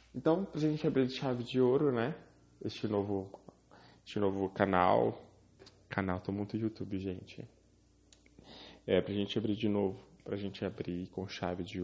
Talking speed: 155 wpm